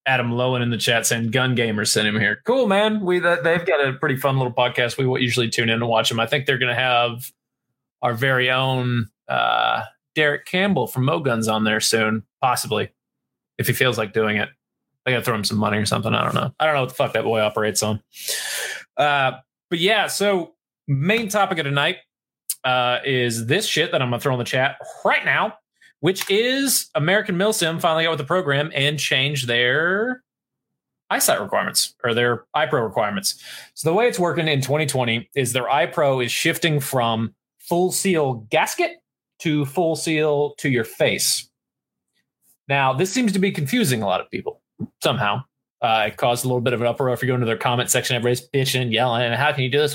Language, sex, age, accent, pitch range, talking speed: English, male, 30-49, American, 120-155 Hz, 210 wpm